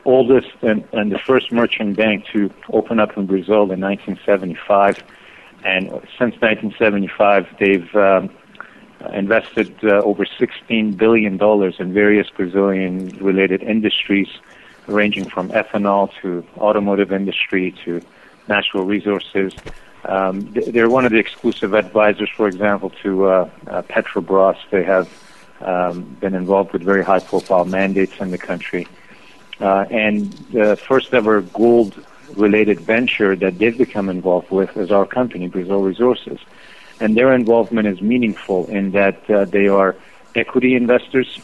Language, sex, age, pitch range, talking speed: English, male, 50-69, 95-110 Hz, 130 wpm